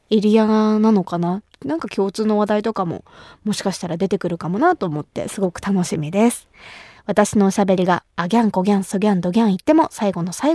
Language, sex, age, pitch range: Japanese, female, 20-39, 180-225 Hz